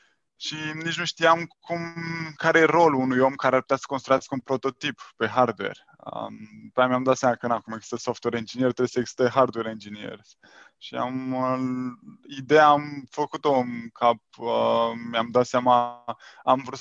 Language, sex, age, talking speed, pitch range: Romanian, male, 20-39, 175 wpm, 120-135 Hz